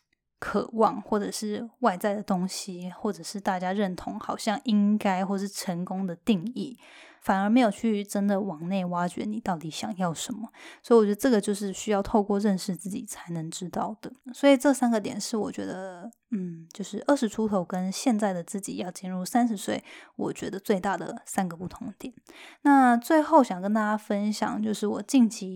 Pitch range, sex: 190-240 Hz, female